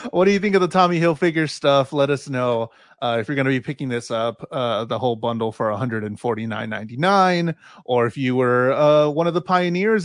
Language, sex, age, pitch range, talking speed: English, male, 30-49, 130-185 Hz, 220 wpm